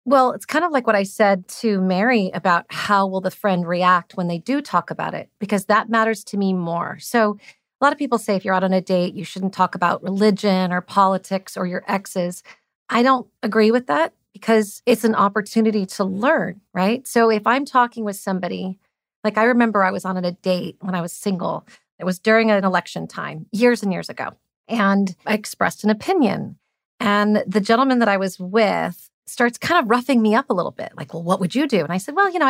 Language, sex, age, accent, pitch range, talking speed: English, female, 30-49, American, 185-230 Hz, 225 wpm